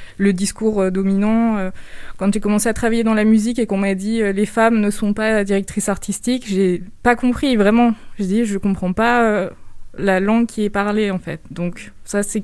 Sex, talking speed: female, 205 wpm